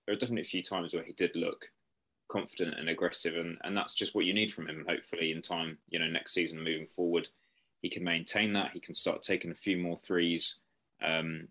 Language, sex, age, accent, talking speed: English, male, 20-39, British, 235 wpm